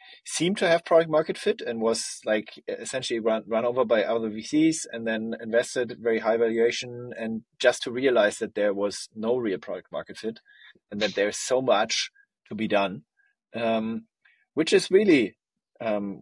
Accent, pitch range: German, 105-140 Hz